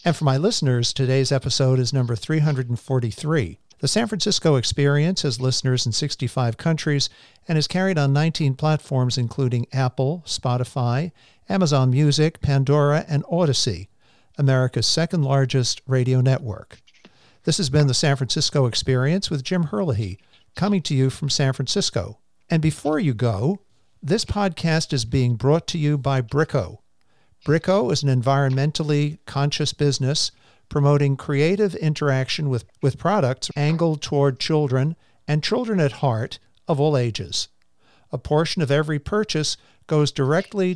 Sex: male